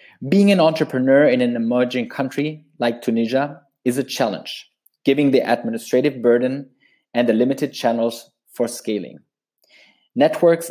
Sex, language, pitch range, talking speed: male, English, 125-155 Hz, 130 wpm